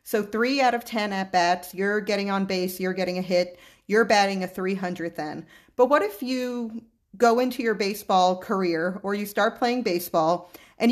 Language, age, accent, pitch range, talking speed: English, 40-59, American, 190-240 Hz, 185 wpm